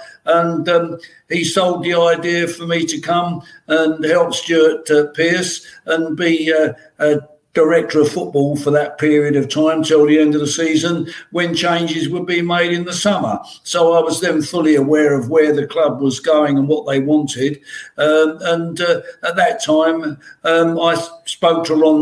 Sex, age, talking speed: male, 60-79, 185 wpm